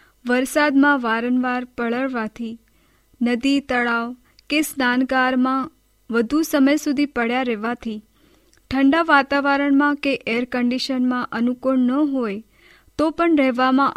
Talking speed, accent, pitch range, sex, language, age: 105 wpm, Indian, 245-290 Hz, female, English, 20-39